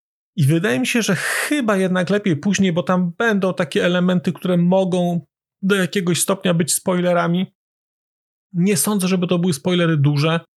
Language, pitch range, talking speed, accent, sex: Polish, 140-180 Hz, 160 wpm, native, male